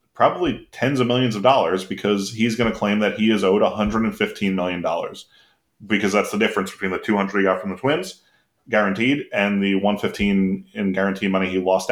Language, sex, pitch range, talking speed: English, male, 95-120 Hz, 190 wpm